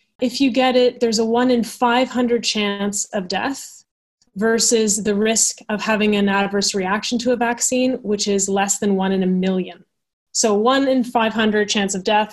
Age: 20-39